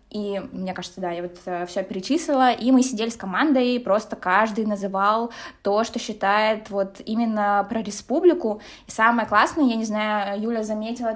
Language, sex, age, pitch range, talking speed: Russian, female, 20-39, 200-230 Hz, 165 wpm